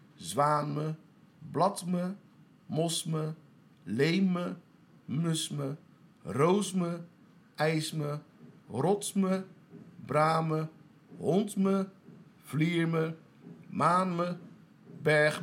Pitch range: 150-200 Hz